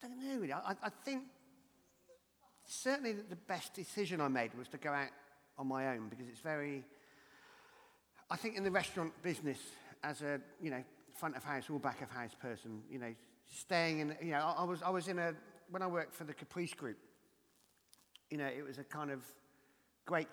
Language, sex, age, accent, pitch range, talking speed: English, male, 40-59, British, 125-155 Hz, 205 wpm